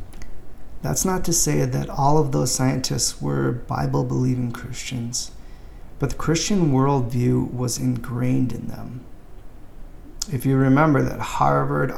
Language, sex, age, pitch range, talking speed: English, male, 30-49, 120-135 Hz, 125 wpm